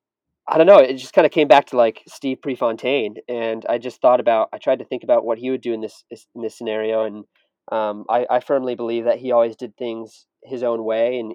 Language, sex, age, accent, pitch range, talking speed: English, male, 20-39, American, 110-125 Hz, 250 wpm